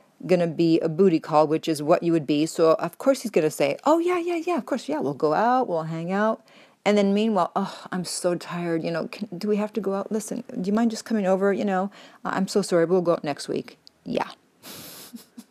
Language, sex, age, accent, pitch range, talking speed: English, female, 40-59, American, 180-240 Hz, 245 wpm